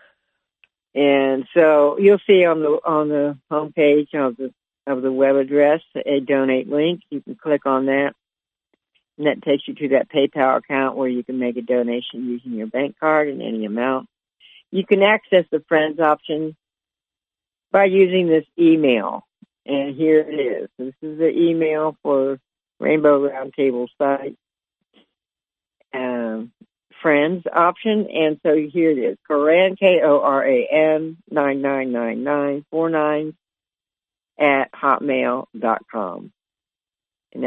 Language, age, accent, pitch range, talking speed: English, 60-79, American, 135-160 Hz, 130 wpm